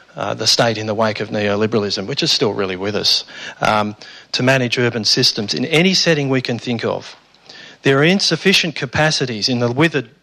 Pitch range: 115-135 Hz